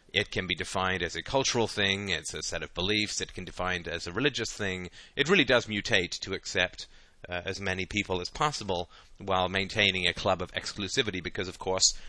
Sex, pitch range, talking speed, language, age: male, 90-115 Hz, 210 wpm, English, 30-49